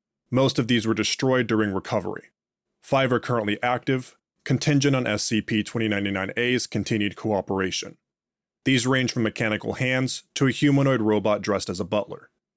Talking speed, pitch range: 140 wpm, 110-130 Hz